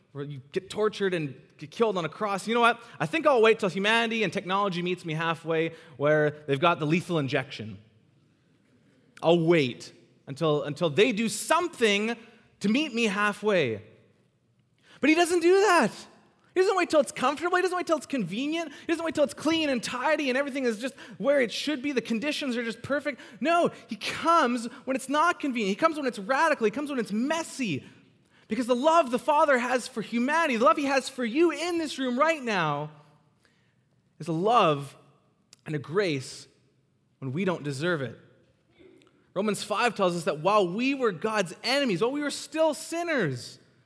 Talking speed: 195 wpm